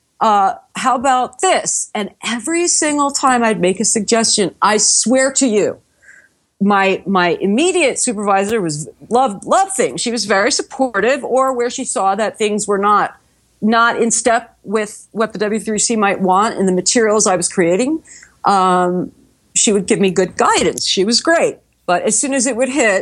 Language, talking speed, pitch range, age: English, 175 wpm, 195-270 Hz, 50-69